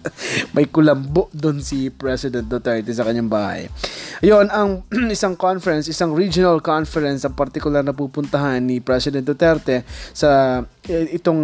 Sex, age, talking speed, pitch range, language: male, 20-39, 130 wpm, 130-165 Hz, Filipino